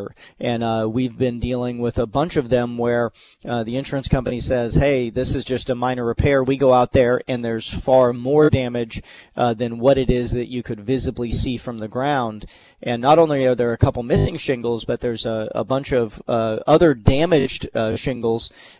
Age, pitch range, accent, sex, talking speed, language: 40-59, 115-135 Hz, American, male, 210 wpm, English